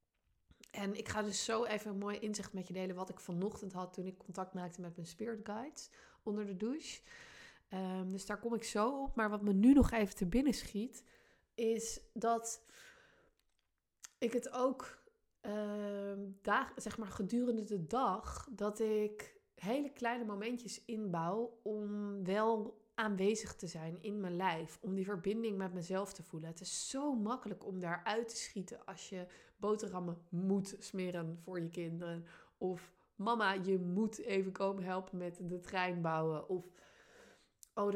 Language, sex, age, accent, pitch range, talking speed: Dutch, female, 20-39, Dutch, 185-225 Hz, 165 wpm